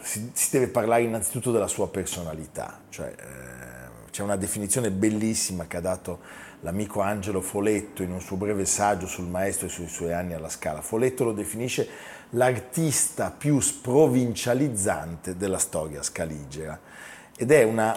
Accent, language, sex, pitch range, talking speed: native, Italian, male, 90-115 Hz, 145 wpm